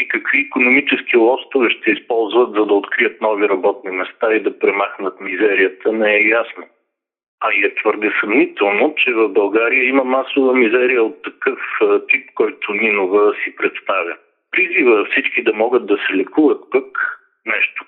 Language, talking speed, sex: Bulgarian, 155 wpm, male